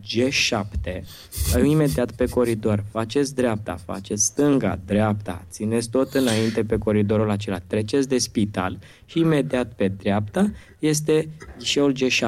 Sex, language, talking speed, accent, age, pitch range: male, Romanian, 115 wpm, native, 20-39, 105-135 Hz